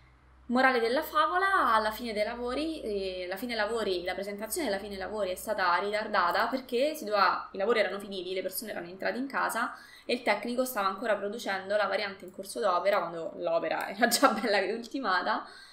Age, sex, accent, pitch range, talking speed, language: 20-39, female, native, 190-250 Hz, 195 wpm, Italian